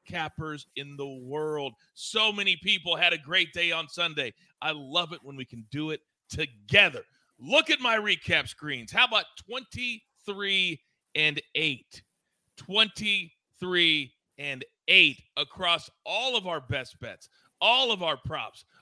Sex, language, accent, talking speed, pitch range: male, English, American, 145 wpm, 140-190 Hz